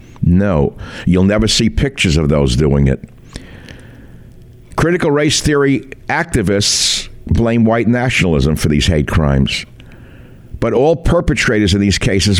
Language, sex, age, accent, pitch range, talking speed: English, male, 60-79, American, 90-120 Hz, 125 wpm